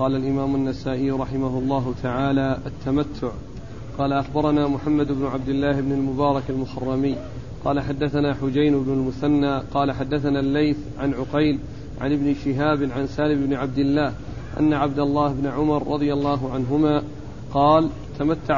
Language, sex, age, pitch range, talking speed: Arabic, male, 40-59, 140-155 Hz, 140 wpm